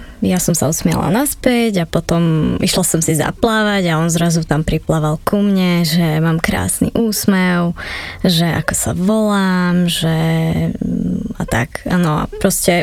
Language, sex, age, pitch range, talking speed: Slovak, female, 20-39, 170-205 Hz, 150 wpm